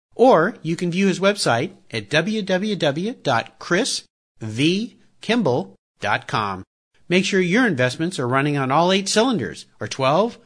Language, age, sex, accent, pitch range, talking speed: English, 50-69, male, American, 125-210 Hz, 115 wpm